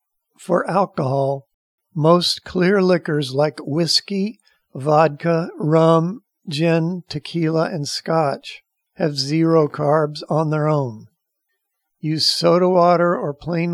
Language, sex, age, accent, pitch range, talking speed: English, male, 50-69, American, 150-180 Hz, 105 wpm